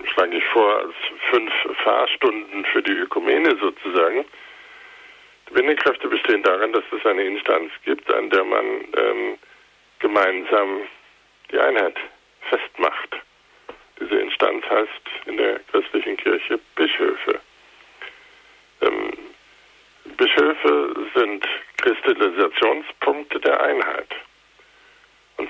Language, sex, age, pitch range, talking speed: German, male, 50-69, 375-460 Hz, 95 wpm